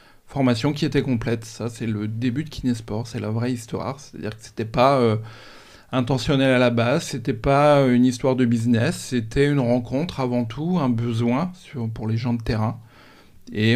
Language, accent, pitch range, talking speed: French, French, 110-130 Hz, 190 wpm